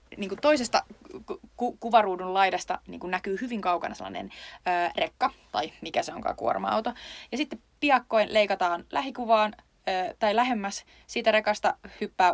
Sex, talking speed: female, 140 wpm